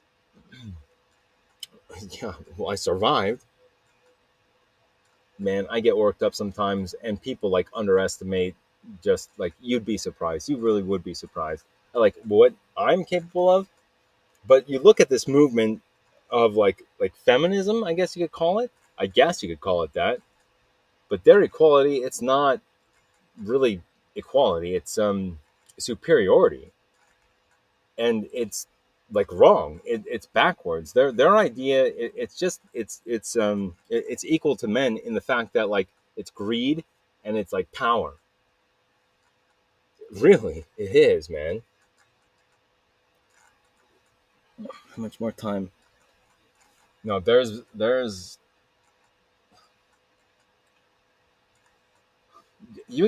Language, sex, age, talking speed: English, male, 30-49, 115 wpm